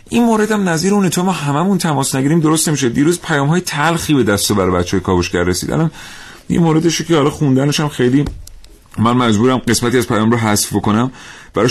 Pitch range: 100-130 Hz